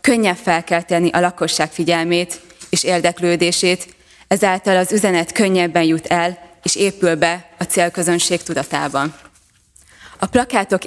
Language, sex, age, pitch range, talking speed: Hungarian, female, 20-39, 170-185 Hz, 115 wpm